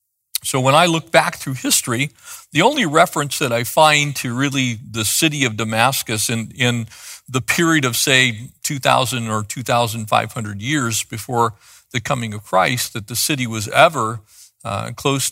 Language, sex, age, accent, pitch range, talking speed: English, male, 50-69, American, 115-140 Hz, 160 wpm